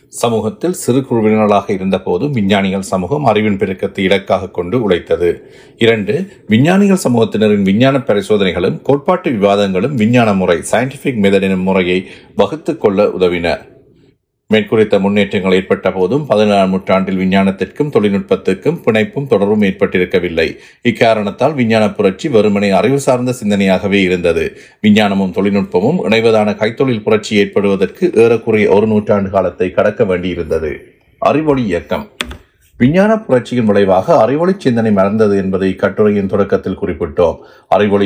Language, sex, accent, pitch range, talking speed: Tamil, male, native, 95-115 Hz, 110 wpm